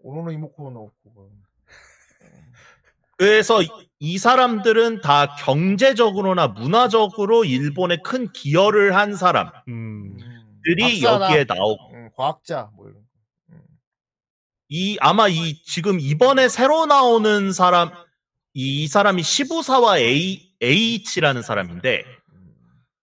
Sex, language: male, Korean